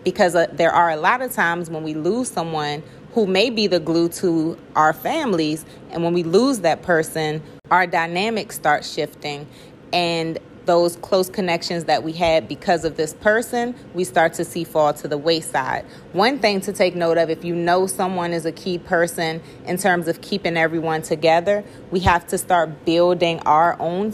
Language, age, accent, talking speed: English, 30-49, American, 185 wpm